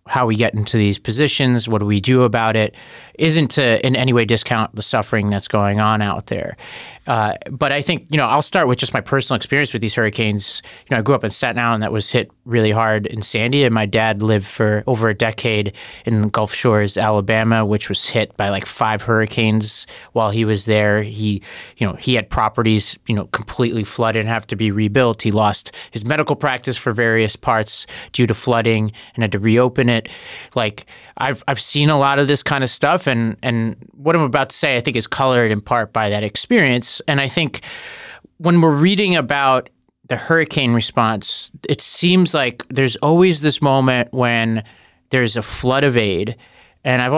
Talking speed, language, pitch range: 205 wpm, English, 110-135 Hz